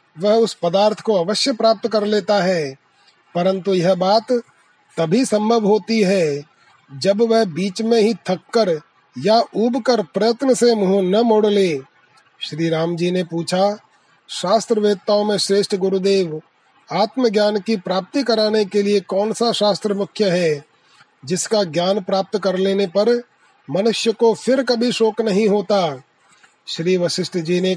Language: Hindi